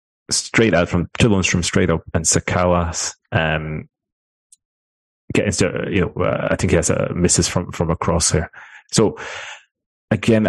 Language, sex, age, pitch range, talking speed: English, male, 30-49, 85-100 Hz, 155 wpm